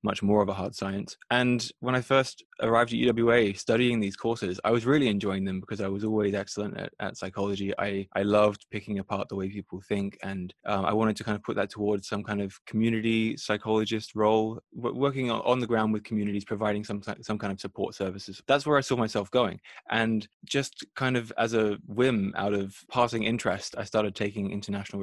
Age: 20-39